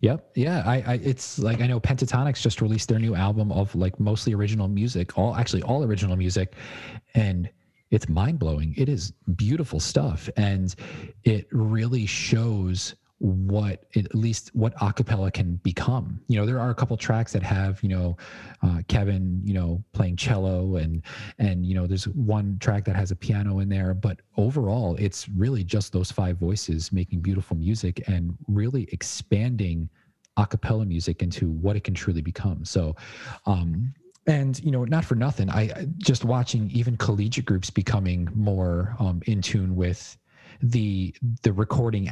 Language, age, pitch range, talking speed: English, 30-49, 95-115 Hz, 170 wpm